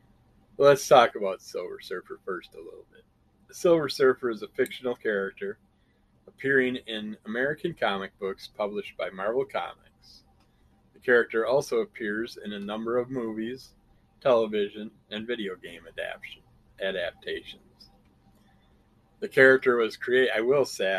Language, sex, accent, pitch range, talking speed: English, male, American, 100-165 Hz, 135 wpm